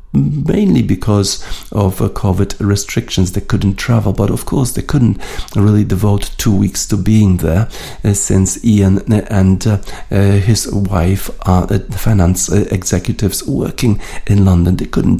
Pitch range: 95-110 Hz